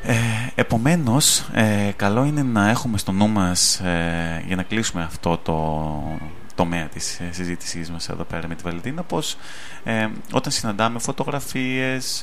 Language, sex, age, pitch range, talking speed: Greek, male, 20-39, 90-110 Hz, 155 wpm